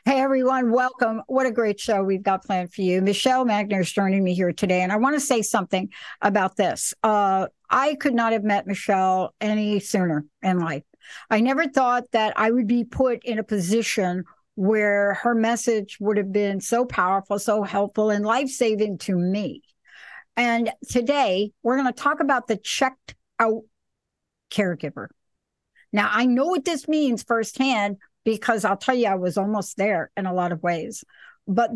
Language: English